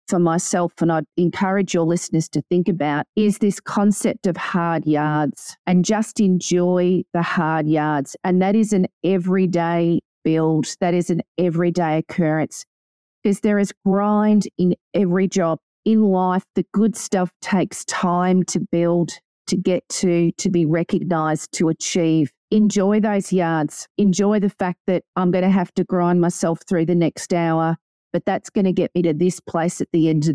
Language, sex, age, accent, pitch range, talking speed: English, female, 40-59, Australian, 165-190 Hz, 175 wpm